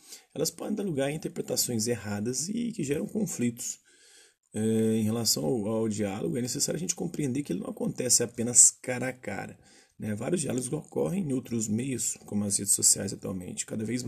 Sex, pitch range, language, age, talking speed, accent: male, 110-135 Hz, Portuguese, 30-49, 185 wpm, Brazilian